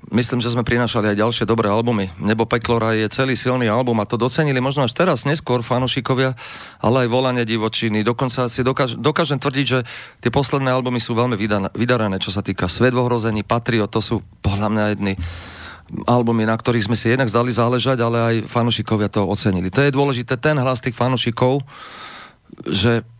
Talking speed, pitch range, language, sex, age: 180 wpm, 115-150 Hz, Slovak, male, 40-59